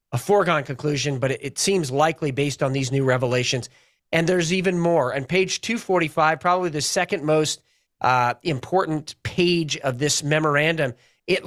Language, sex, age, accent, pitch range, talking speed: English, male, 40-59, American, 145-185 Hz, 155 wpm